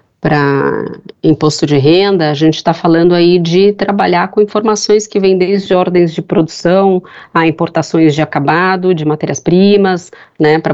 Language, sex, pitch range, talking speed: English, female, 150-175 Hz, 150 wpm